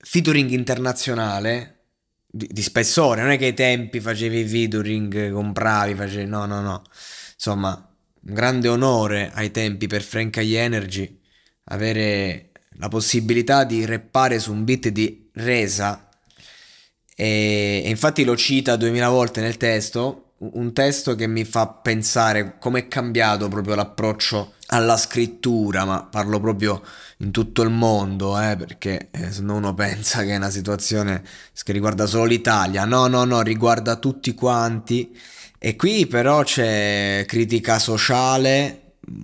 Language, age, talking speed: Italian, 20-39, 140 wpm